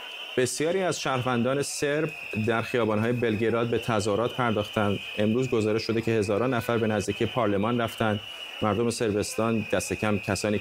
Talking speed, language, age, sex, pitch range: 135 wpm, Persian, 30-49, male, 105-125 Hz